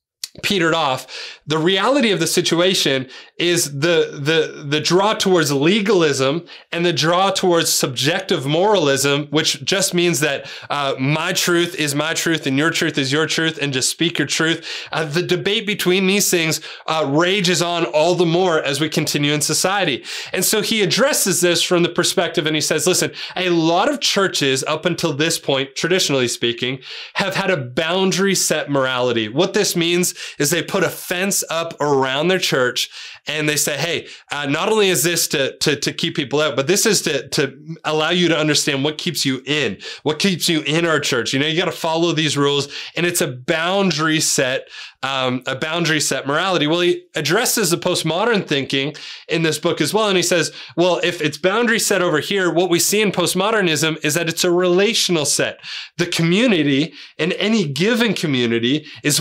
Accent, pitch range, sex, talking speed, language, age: American, 150-180 Hz, male, 190 wpm, English, 20-39